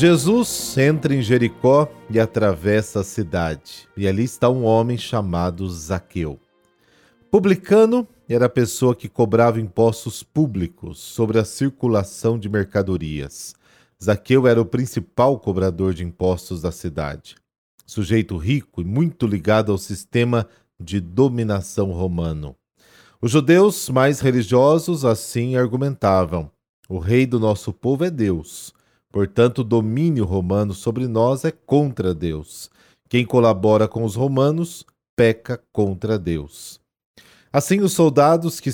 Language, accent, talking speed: Portuguese, Brazilian, 125 wpm